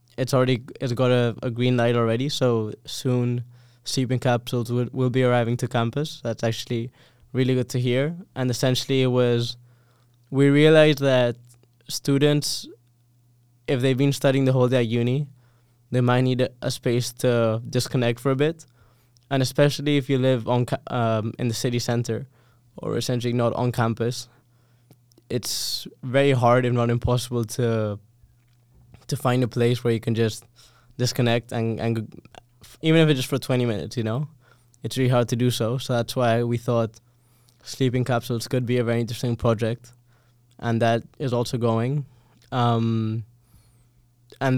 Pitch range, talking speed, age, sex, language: 120-130 Hz, 165 wpm, 10-29, male, English